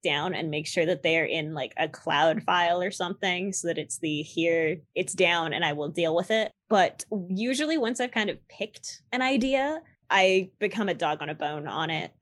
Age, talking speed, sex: 20-39, 215 wpm, female